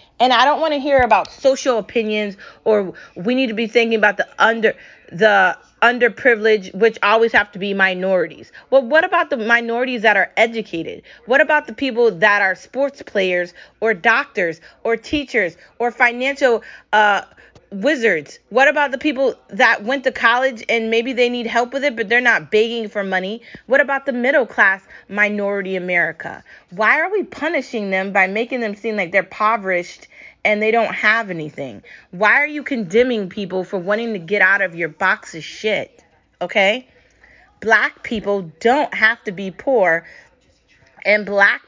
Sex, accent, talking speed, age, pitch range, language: female, American, 175 wpm, 30-49, 190-240 Hz, English